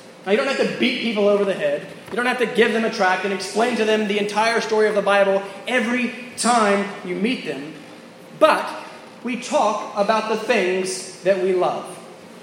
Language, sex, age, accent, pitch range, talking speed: English, male, 30-49, American, 195-235 Hz, 205 wpm